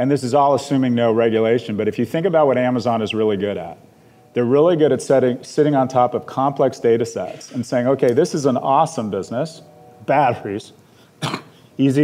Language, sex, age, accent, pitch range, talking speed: English, male, 40-59, American, 115-135 Hz, 200 wpm